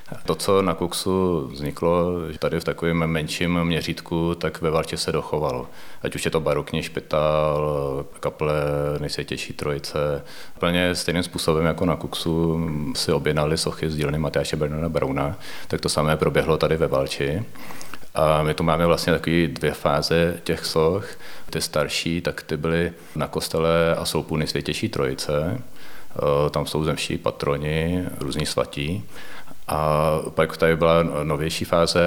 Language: Czech